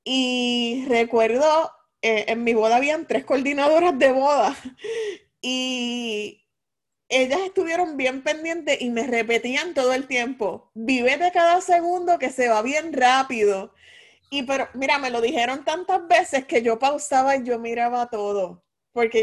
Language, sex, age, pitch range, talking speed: Spanish, female, 20-39, 220-285 Hz, 145 wpm